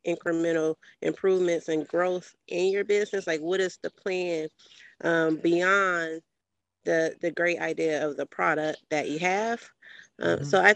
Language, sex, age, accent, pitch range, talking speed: English, female, 30-49, American, 165-190 Hz, 155 wpm